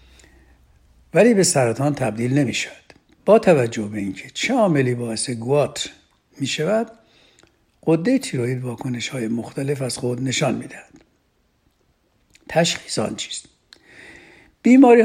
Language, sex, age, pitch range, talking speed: Persian, male, 60-79, 115-160 Hz, 110 wpm